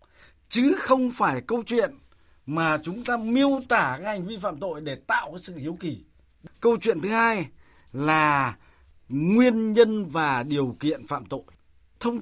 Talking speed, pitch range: 165 wpm, 150-230 Hz